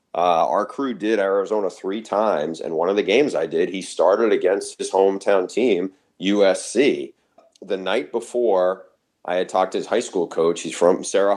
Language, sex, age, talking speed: English, male, 30-49, 185 wpm